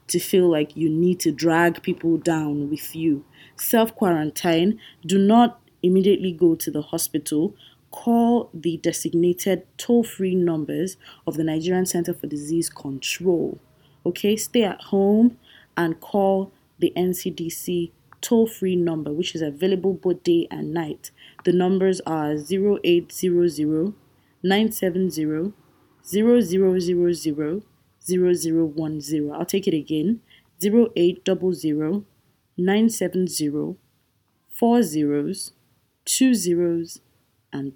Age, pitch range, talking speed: 20-39, 155-185 Hz, 115 wpm